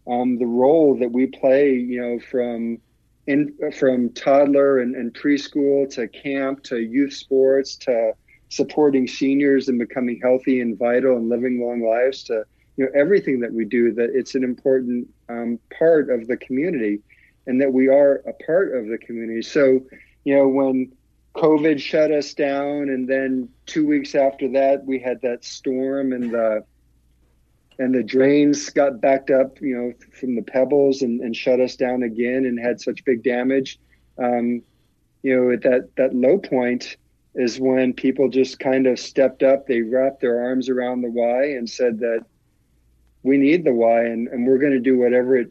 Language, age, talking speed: English, 50-69, 180 wpm